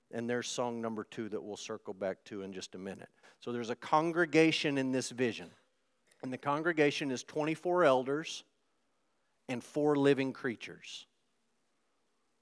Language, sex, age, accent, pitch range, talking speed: English, male, 50-69, American, 120-150 Hz, 150 wpm